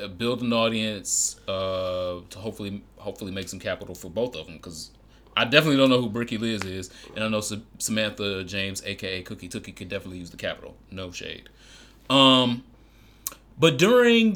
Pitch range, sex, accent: 100-125 Hz, male, American